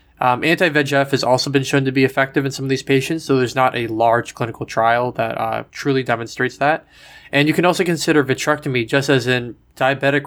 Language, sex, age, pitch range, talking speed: English, male, 20-39, 125-145 Hz, 210 wpm